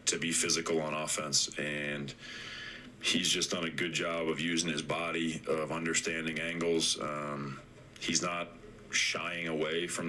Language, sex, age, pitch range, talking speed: English, male, 30-49, 75-85 Hz, 150 wpm